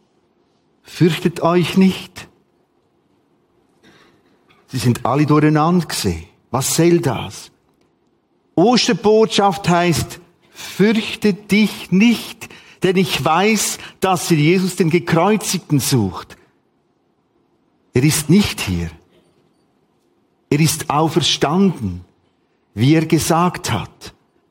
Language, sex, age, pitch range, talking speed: German, male, 50-69, 130-175 Hz, 90 wpm